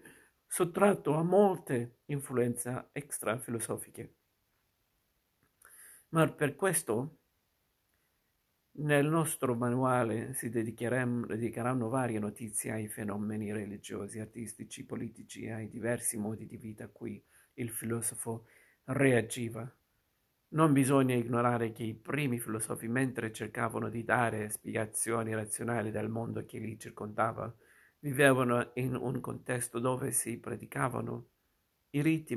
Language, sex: Italian, male